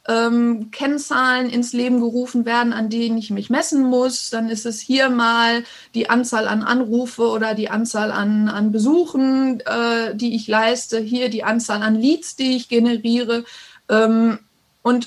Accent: German